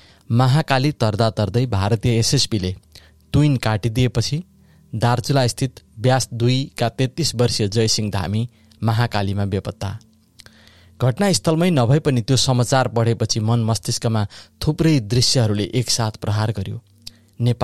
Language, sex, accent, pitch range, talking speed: English, male, Indian, 105-130 Hz, 130 wpm